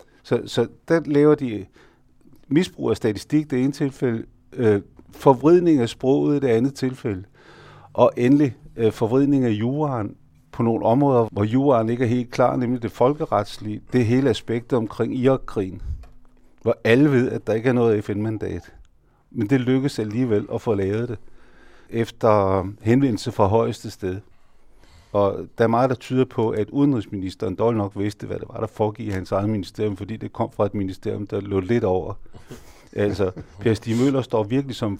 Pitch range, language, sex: 100-125 Hz, Danish, male